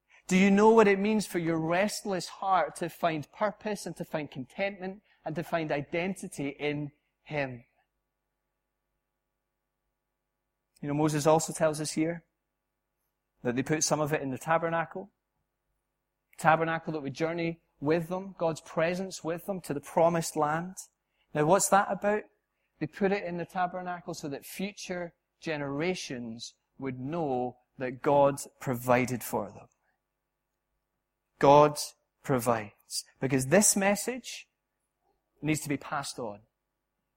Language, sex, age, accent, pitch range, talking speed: English, male, 30-49, British, 145-190 Hz, 135 wpm